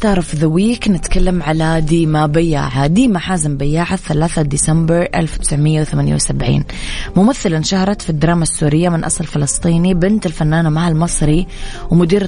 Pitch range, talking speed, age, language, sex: 155-175 Hz, 115 wpm, 20-39, English, female